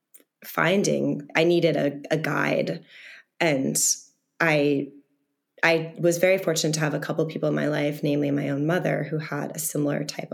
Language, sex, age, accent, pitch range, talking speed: English, female, 20-39, American, 145-160 Hz, 175 wpm